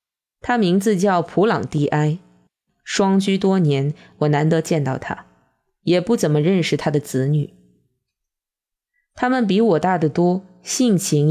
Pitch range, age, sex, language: 150-205 Hz, 20-39, female, Chinese